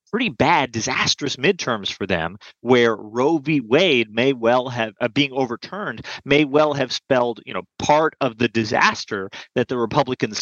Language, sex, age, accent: English, male, 30-49, American